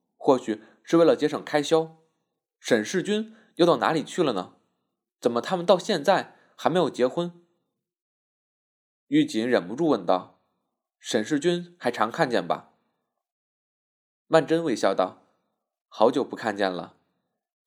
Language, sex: Chinese, male